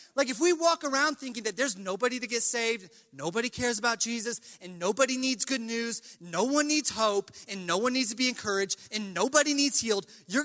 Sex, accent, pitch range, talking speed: male, American, 175-245 Hz, 215 wpm